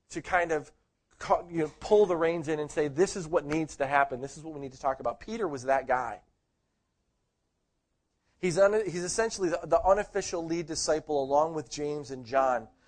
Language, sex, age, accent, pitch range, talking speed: English, male, 40-59, American, 120-160 Hz, 185 wpm